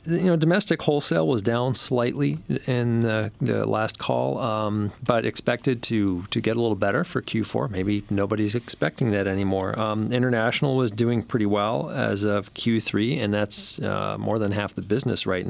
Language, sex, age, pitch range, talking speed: English, male, 40-59, 100-125 Hz, 175 wpm